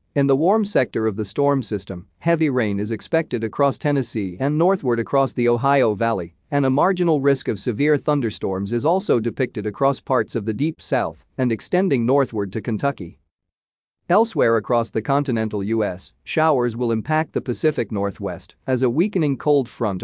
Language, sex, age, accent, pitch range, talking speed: English, male, 40-59, American, 110-140 Hz, 170 wpm